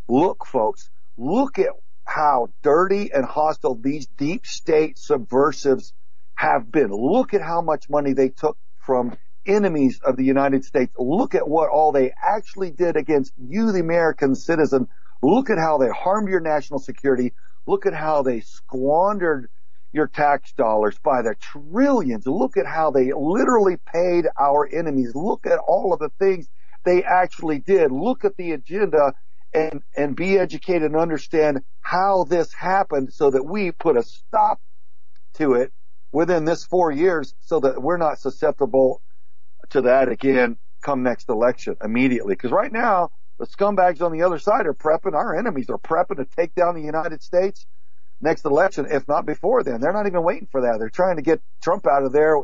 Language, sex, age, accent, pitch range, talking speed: English, male, 50-69, American, 135-180 Hz, 175 wpm